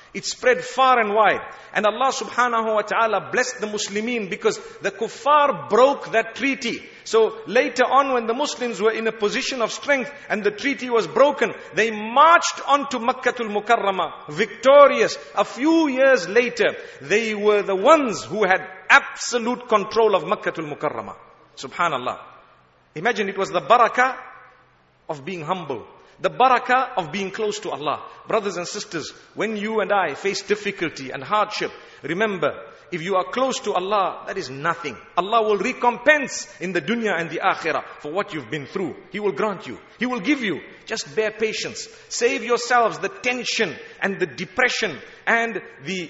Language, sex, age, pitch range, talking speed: English, male, 50-69, 195-255 Hz, 170 wpm